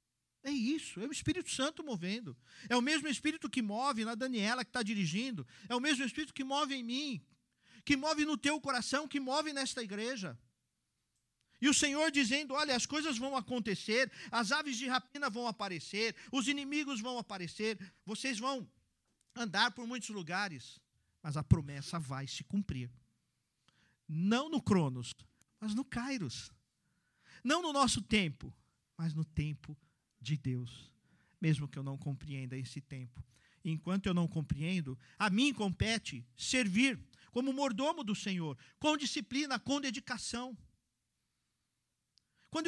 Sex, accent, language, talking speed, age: male, Brazilian, Portuguese, 150 wpm, 50-69